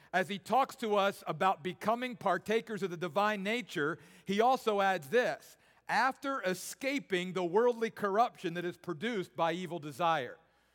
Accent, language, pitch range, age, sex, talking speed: American, English, 180-235 Hz, 50-69, male, 150 wpm